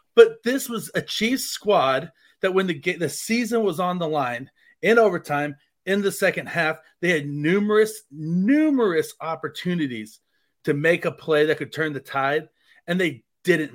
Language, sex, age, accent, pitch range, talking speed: English, male, 40-59, American, 150-190 Hz, 165 wpm